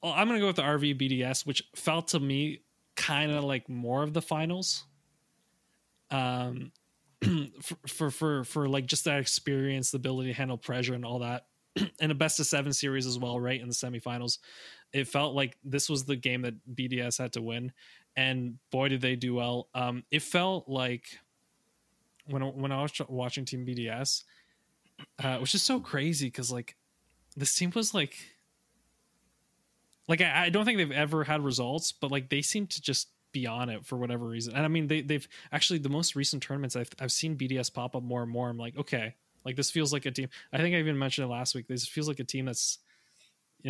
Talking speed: 210 wpm